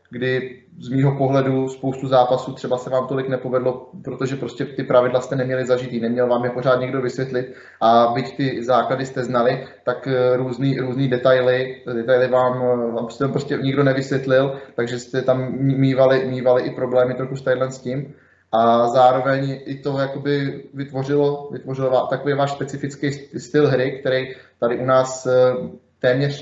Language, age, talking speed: Czech, 20-39, 150 wpm